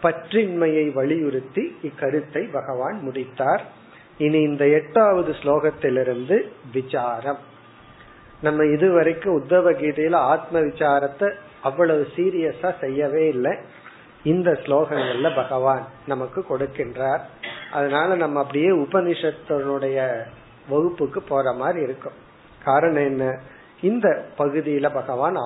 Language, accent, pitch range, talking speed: Tamil, native, 140-180 Hz, 90 wpm